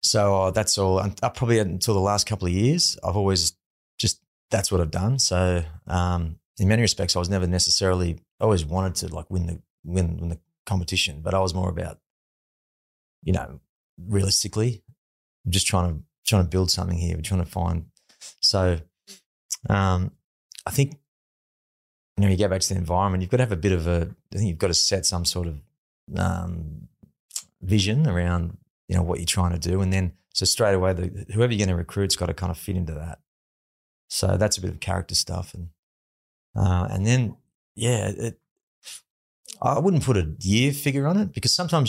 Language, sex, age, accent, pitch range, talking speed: English, male, 20-39, Australian, 85-105 Hz, 205 wpm